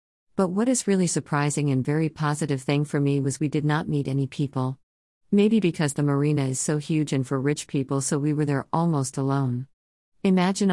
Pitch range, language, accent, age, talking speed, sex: 130-160 Hz, English, American, 40-59, 200 wpm, female